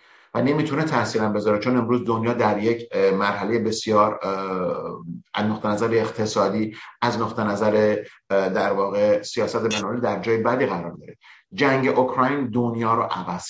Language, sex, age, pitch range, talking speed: Persian, male, 50-69, 105-120 Hz, 140 wpm